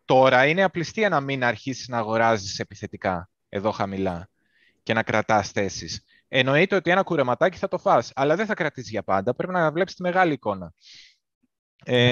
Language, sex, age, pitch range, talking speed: Greek, male, 20-39, 105-140 Hz, 175 wpm